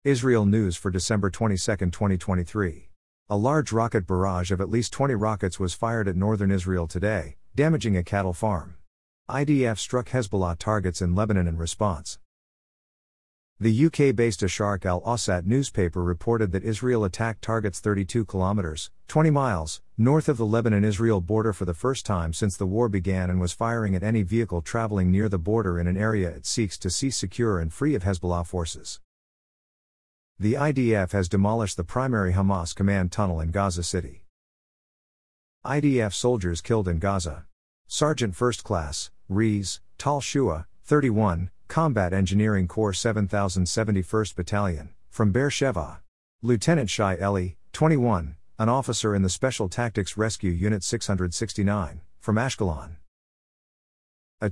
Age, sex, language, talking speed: 50-69, male, English, 145 wpm